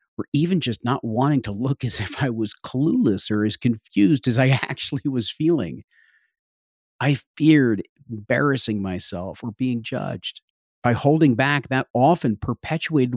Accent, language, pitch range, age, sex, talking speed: American, English, 110-135 Hz, 40-59, male, 150 wpm